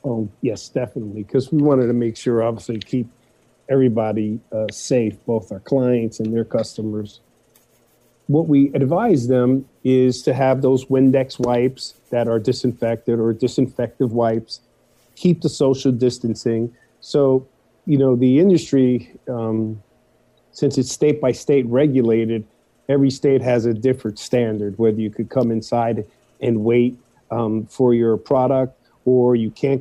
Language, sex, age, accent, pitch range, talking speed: English, male, 40-59, American, 115-135 Hz, 140 wpm